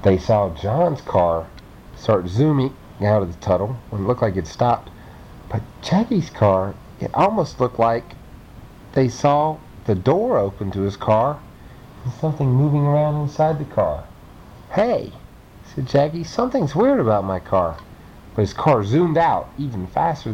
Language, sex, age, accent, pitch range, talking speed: English, male, 40-59, American, 100-145 Hz, 155 wpm